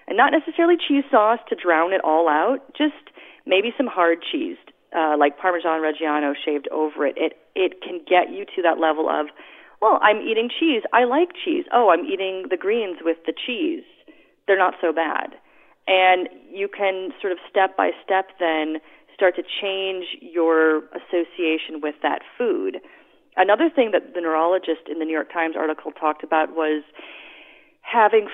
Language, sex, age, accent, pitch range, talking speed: English, female, 30-49, American, 155-225 Hz, 175 wpm